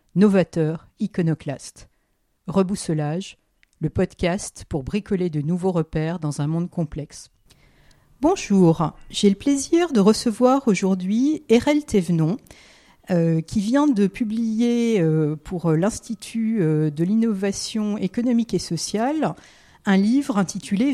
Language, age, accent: French, 50-69, French